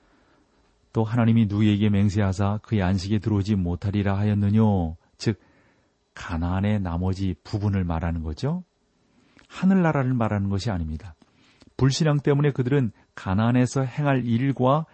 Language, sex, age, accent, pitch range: Korean, male, 40-59, native, 100-135 Hz